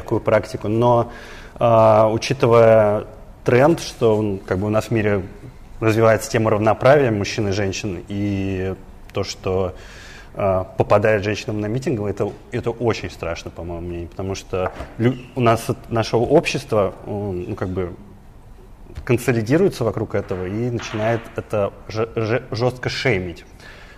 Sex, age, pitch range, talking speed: male, 30-49, 95-115 Hz, 135 wpm